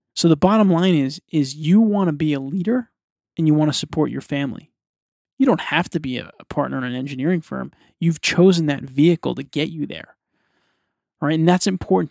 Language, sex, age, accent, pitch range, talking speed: English, male, 20-39, American, 145-170 Hz, 210 wpm